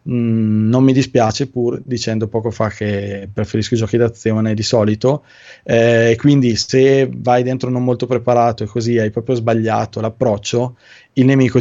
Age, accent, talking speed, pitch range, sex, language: 20-39, native, 155 wpm, 115-130 Hz, male, Italian